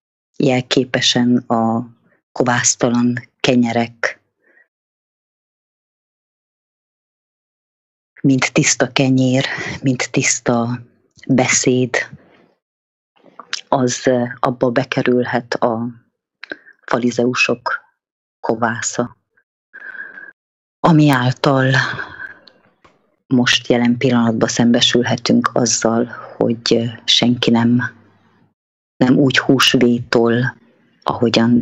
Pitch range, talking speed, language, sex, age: 115-125 Hz, 55 wpm, English, female, 30-49